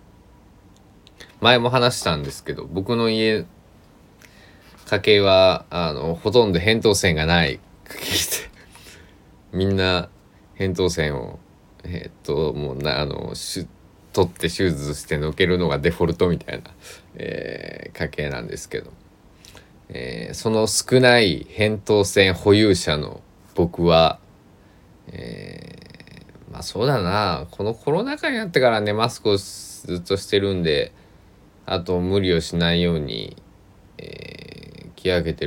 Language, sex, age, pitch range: Japanese, male, 20-39, 80-105 Hz